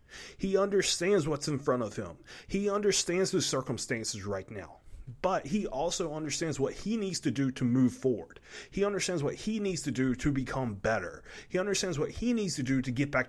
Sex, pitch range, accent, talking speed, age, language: male, 95-145 Hz, American, 205 wpm, 30-49, English